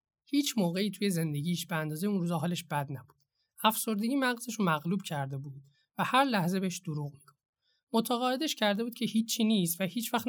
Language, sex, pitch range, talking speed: Persian, male, 150-210 Hz, 175 wpm